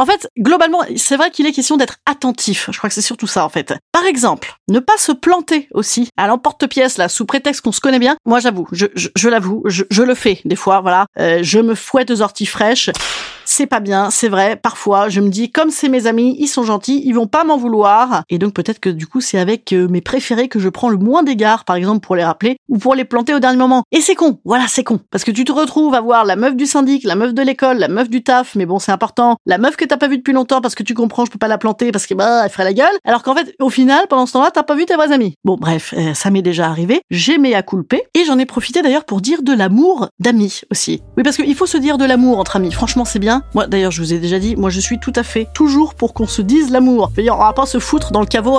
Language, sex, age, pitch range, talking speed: French, female, 30-49, 205-280 Hz, 290 wpm